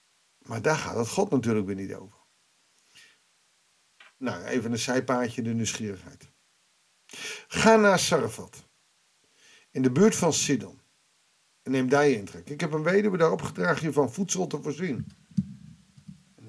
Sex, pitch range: male, 120-155 Hz